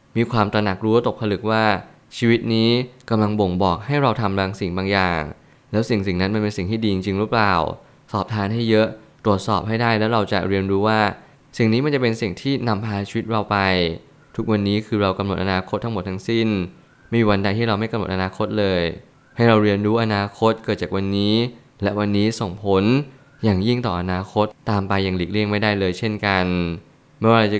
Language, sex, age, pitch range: Thai, male, 20-39, 95-115 Hz